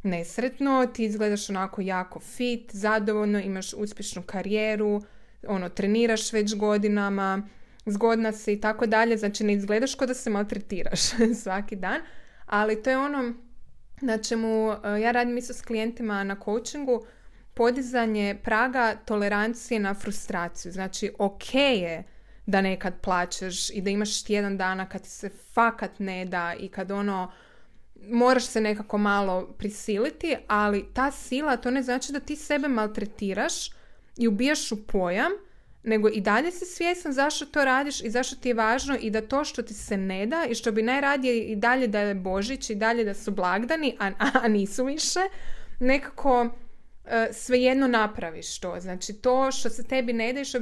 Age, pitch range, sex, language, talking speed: 20-39, 200-250 Hz, female, Croatian, 160 wpm